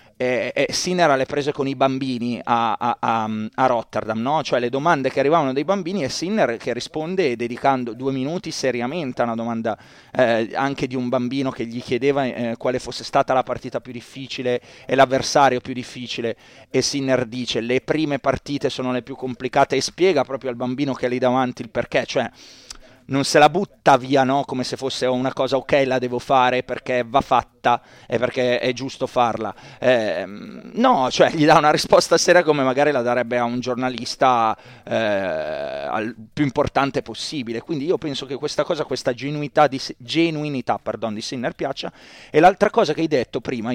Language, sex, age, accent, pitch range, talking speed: Italian, male, 30-49, native, 125-145 Hz, 190 wpm